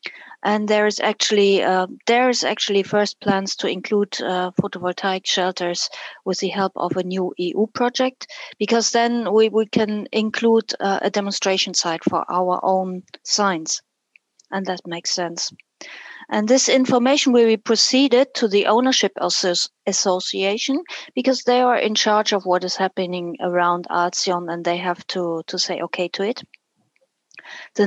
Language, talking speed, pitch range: English, 155 wpm, 180-230 Hz